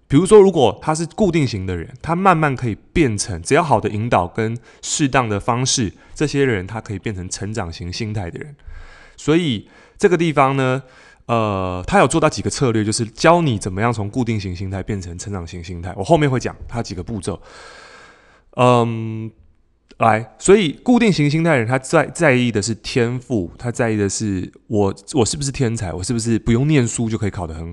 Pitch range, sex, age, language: 100-140 Hz, male, 20-39, Chinese